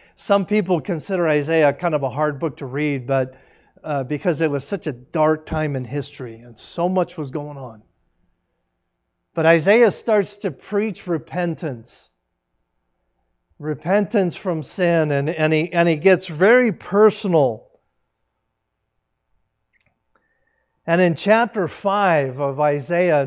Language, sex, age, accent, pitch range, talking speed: English, male, 50-69, American, 140-180 Hz, 125 wpm